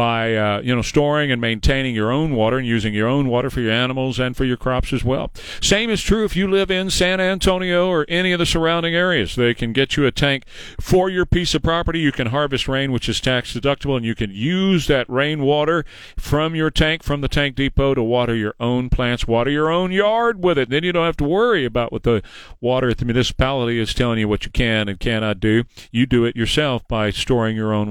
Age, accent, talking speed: 40-59, American, 240 wpm